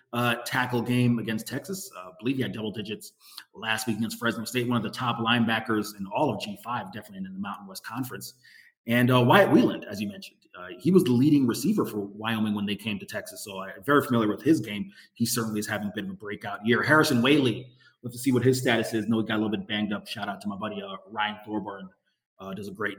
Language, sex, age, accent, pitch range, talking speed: English, male, 30-49, American, 105-130 Hz, 255 wpm